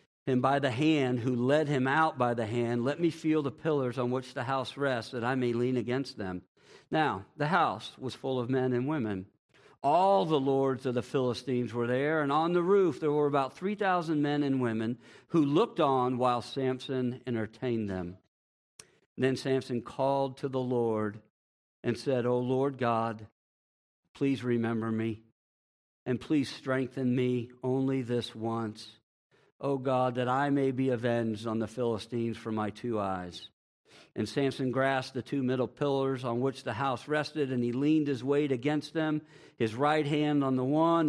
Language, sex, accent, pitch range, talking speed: English, male, American, 120-145 Hz, 180 wpm